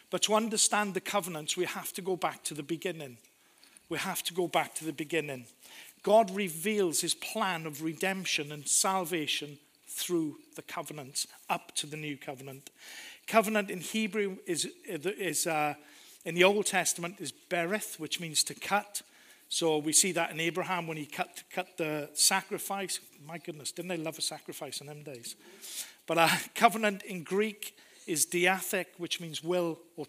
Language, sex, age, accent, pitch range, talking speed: English, male, 50-69, British, 155-200 Hz, 170 wpm